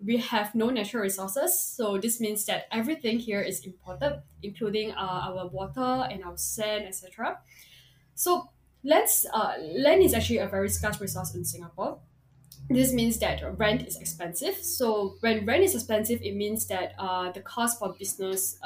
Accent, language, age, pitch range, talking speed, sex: Malaysian, English, 10-29, 190-235 Hz, 165 wpm, female